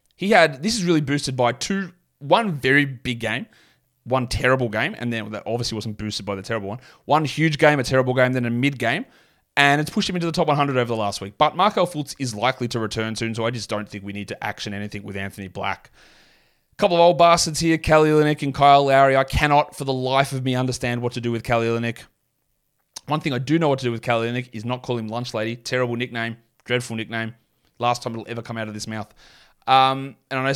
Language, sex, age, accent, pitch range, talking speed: English, male, 20-39, Australian, 115-135 Hz, 245 wpm